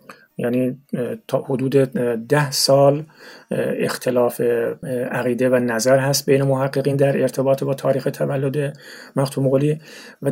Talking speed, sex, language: 115 wpm, male, Persian